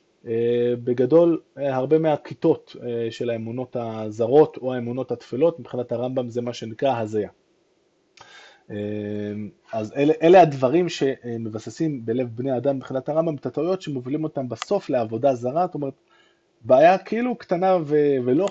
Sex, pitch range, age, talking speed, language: male, 120-175 Hz, 20-39, 120 wpm, Hebrew